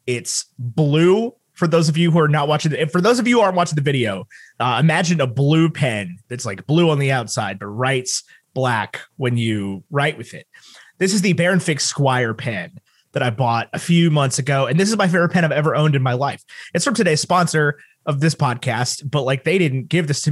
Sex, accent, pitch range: male, American, 125-165 Hz